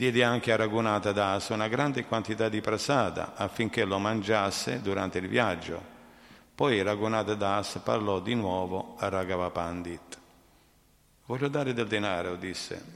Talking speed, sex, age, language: 130 wpm, male, 50-69, Italian